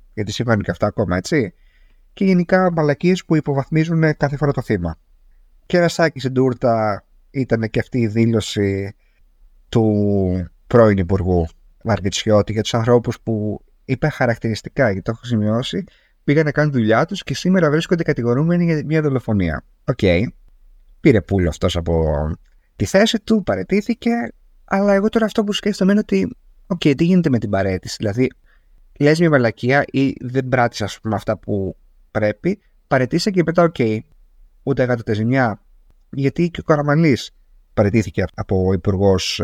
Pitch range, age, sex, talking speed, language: 95-145 Hz, 30-49, male, 150 wpm, Greek